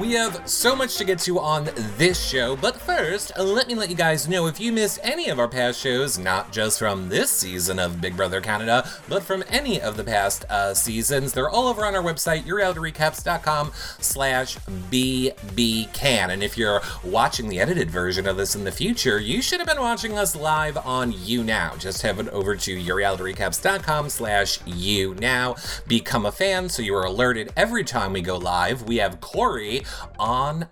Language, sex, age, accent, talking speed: English, male, 30-49, American, 190 wpm